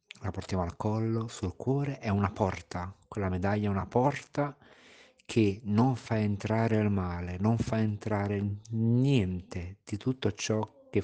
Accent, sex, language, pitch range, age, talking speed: native, male, Italian, 90-110 Hz, 50-69, 150 wpm